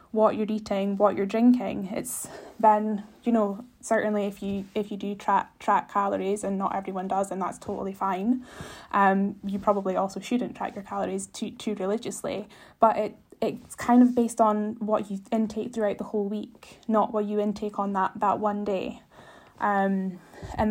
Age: 10-29